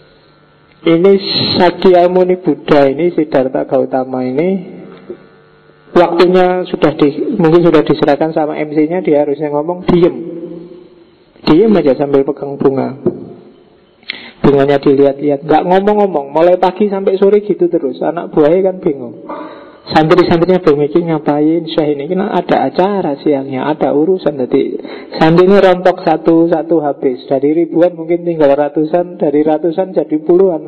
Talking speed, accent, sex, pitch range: 125 wpm, native, male, 145-185 Hz